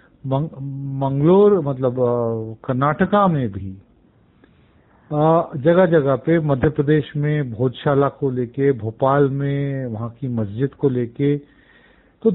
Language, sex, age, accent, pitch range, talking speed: Hindi, male, 50-69, native, 120-155 Hz, 105 wpm